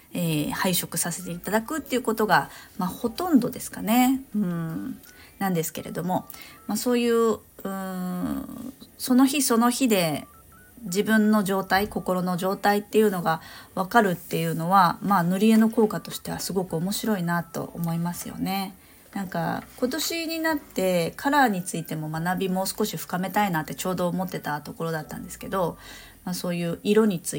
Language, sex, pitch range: Japanese, female, 170-225 Hz